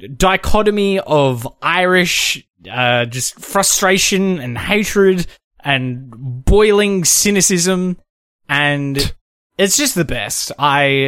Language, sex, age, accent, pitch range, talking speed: English, male, 10-29, Australian, 120-165 Hz, 90 wpm